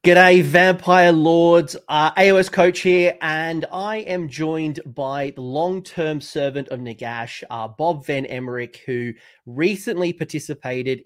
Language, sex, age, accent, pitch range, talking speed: English, male, 30-49, Australian, 120-165 Hz, 130 wpm